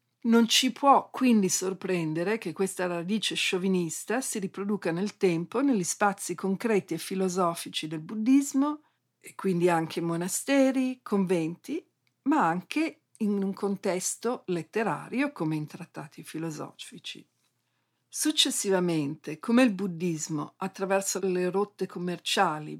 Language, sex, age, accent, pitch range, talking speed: Italian, female, 50-69, native, 170-215 Hz, 115 wpm